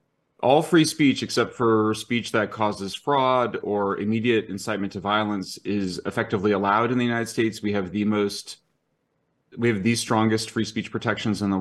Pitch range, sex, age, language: 105-120 Hz, male, 30-49, English